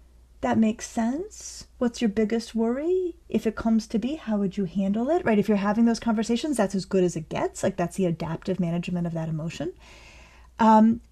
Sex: female